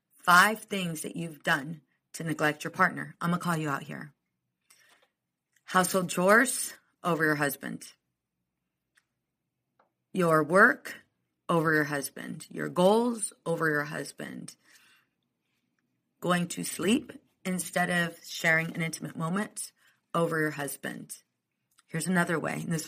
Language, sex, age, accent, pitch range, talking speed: English, female, 30-49, American, 150-185 Hz, 125 wpm